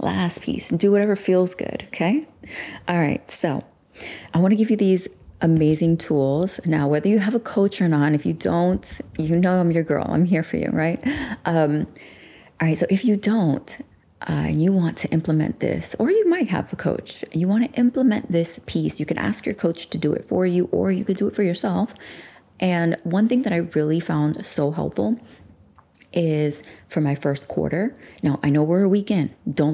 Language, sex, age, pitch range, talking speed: English, female, 30-49, 155-195 Hz, 210 wpm